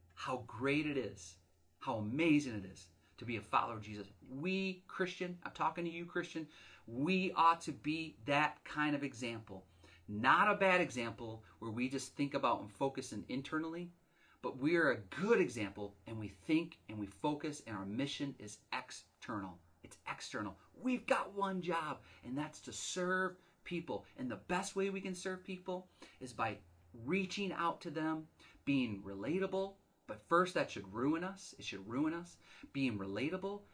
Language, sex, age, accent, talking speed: English, male, 40-59, American, 175 wpm